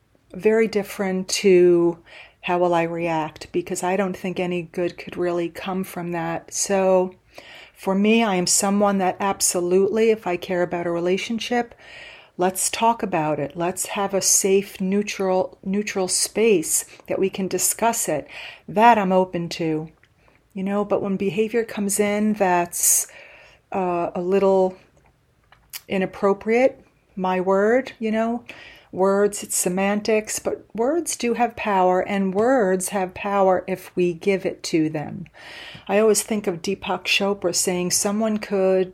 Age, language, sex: 40-59, English, female